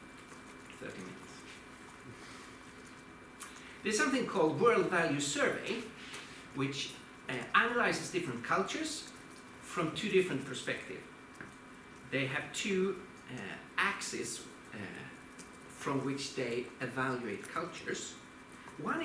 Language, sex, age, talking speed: Danish, male, 60-79, 85 wpm